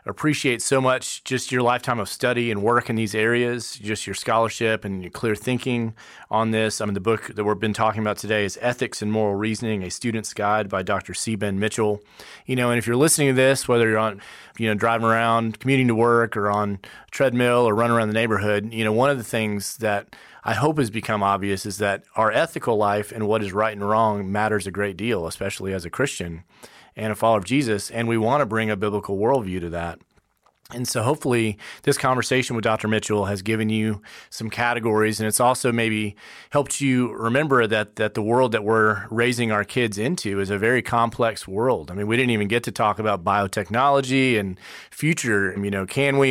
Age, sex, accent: 30-49, male, American